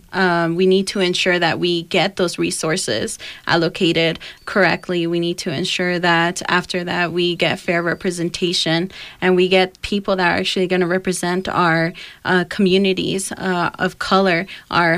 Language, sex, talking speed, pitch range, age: English, female, 160 wpm, 170-185 Hz, 30-49